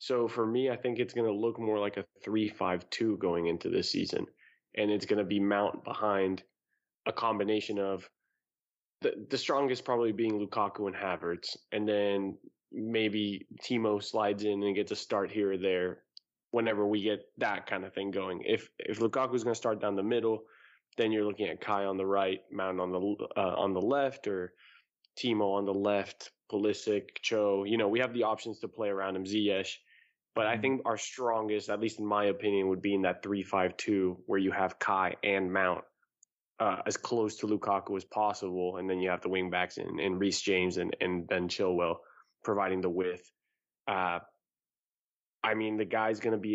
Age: 20-39